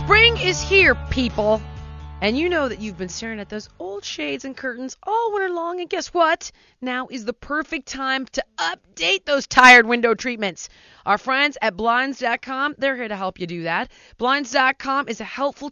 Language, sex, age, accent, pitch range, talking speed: English, female, 30-49, American, 180-270 Hz, 185 wpm